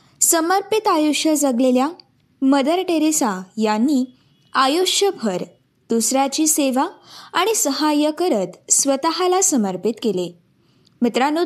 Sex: female